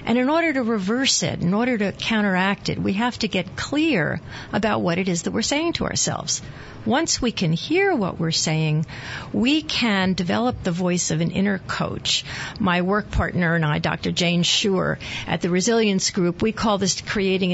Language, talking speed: English, 195 wpm